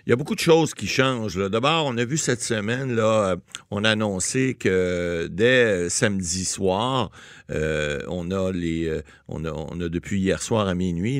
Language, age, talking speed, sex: French, 60-79, 200 wpm, male